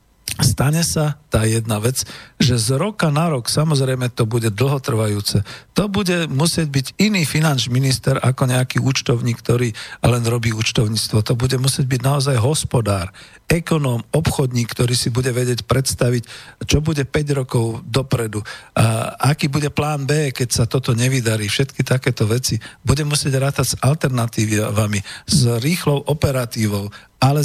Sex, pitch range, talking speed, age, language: male, 115-145 Hz, 145 wpm, 50-69, Slovak